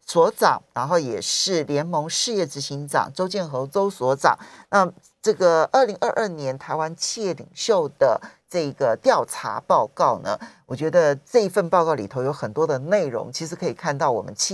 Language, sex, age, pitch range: Chinese, male, 50-69, 150-235 Hz